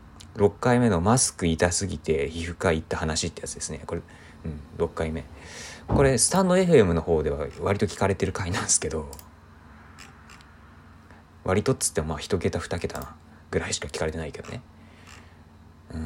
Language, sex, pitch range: Japanese, male, 80-100 Hz